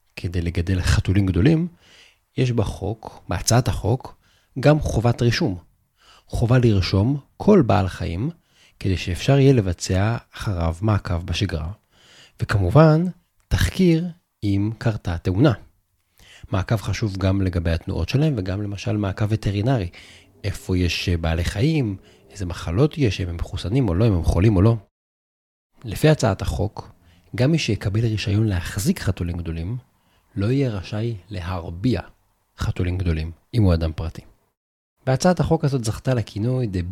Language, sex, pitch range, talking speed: Hebrew, male, 90-120 Hz, 130 wpm